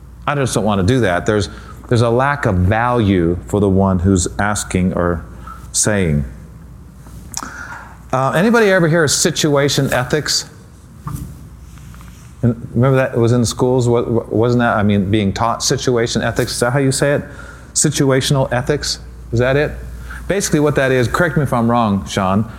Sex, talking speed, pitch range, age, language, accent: male, 165 wpm, 95-145 Hz, 40-59, English, American